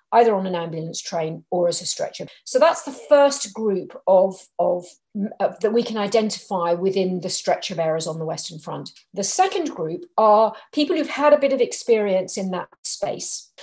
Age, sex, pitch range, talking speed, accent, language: 40-59, female, 175-240 Hz, 195 wpm, British, English